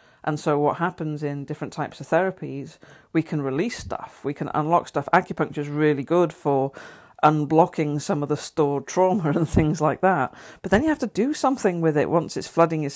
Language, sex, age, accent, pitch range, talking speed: English, female, 50-69, British, 150-180 Hz, 210 wpm